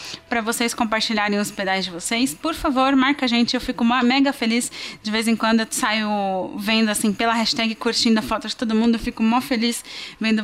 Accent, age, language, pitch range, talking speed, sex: Brazilian, 20-39, Portuguese, 220-270 Hz, 200 wpm, female